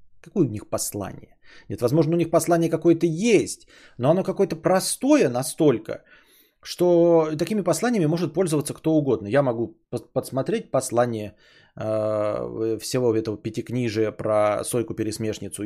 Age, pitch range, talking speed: 20-39, 115-165 Hz, 125 wpm